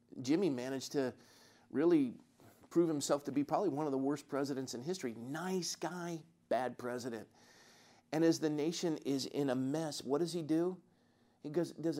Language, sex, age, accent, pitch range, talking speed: English, male, 50-69, American, 125-155 Hz, 170 wpm